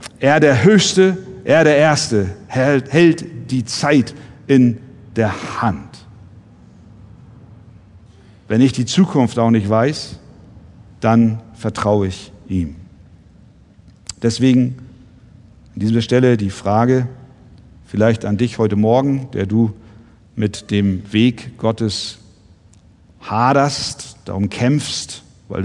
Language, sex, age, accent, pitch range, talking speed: German, male, 50-69, German, 100-125 Hz, 105 wpm